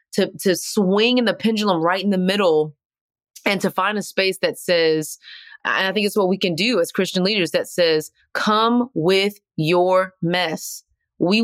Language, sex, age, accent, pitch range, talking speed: English, female, 30-49, American, 160-200 Hz, 185 wpm